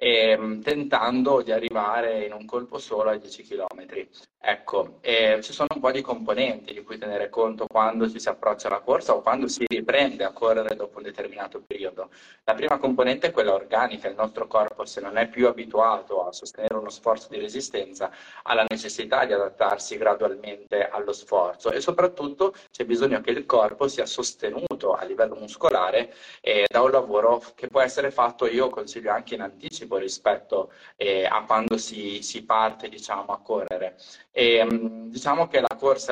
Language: Italian